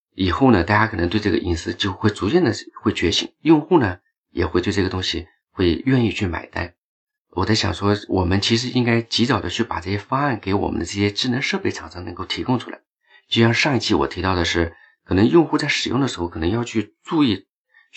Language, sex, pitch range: Chinese, male, 95-120 Hz